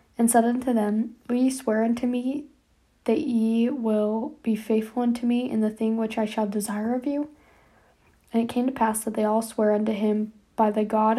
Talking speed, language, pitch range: 210 wpm, English, 215-235 Hz